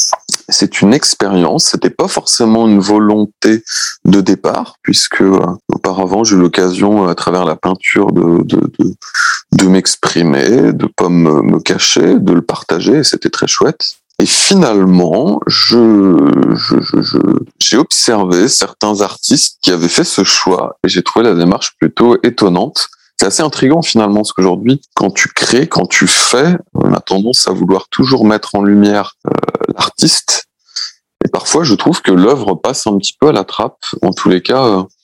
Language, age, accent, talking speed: French, 30-49, French, 175 wpm